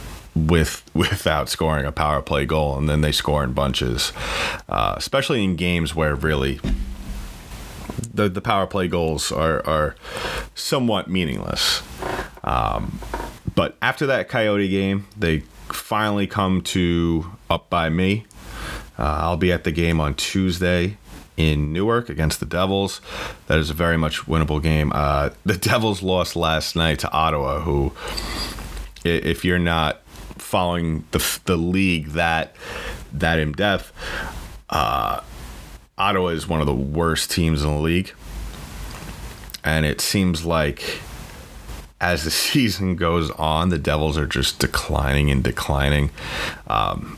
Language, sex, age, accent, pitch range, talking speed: English, male, 30-49, American, 75-95 Hz, 140 wpm